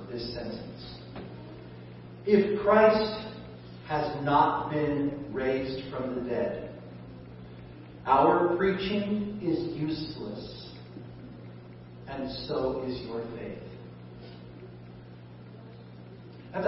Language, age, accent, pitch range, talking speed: English, 40-59, American, 120-200 Hz, 75 wpm